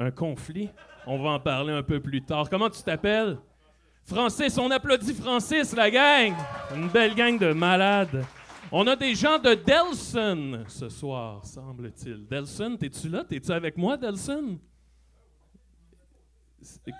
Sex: male